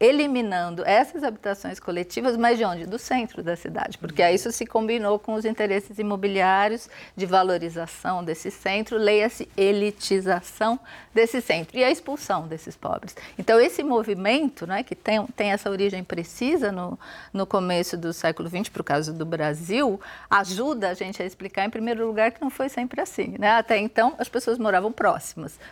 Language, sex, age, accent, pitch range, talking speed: Portuguese, female, 50-69, Brazilian, 175-230 Hz, 175 wpm